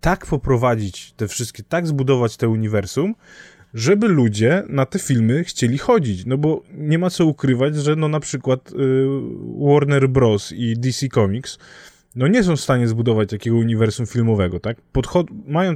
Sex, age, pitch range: male, 20-39, 105-130 Hz